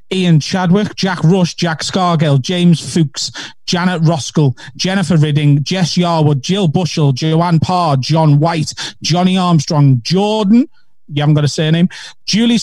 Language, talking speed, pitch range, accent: English, 140 wpm, 150-190 Hz, British